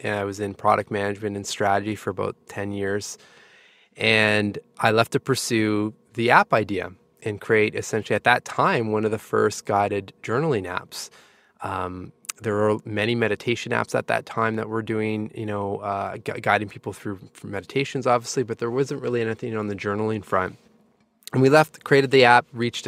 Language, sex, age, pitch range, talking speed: English, male, 20-39, 100-120 Hz, 185 wpm